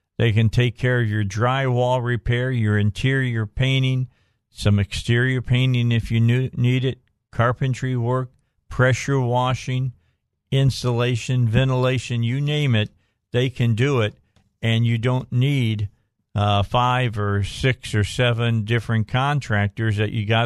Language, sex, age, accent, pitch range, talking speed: English, male, 50-69, American, 105-130 Hz, 135 wpm